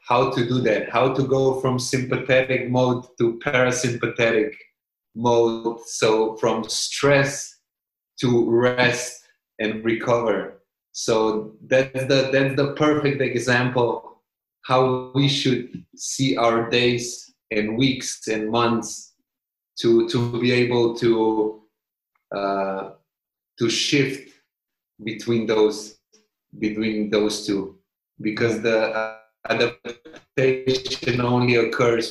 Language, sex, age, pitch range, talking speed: English, male, 30-49, 105-125 Hz, 105 wpm